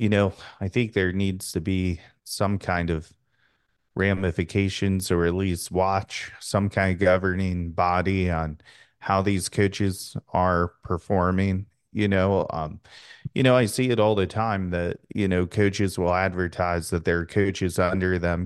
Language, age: English, 30-49